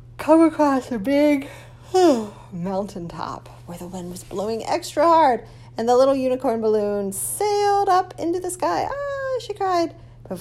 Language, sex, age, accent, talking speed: English, female, 30-49, American, 150 wpm